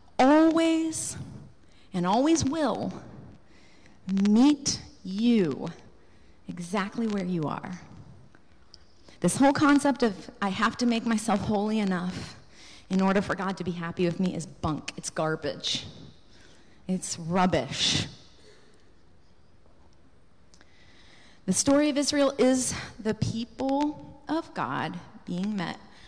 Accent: American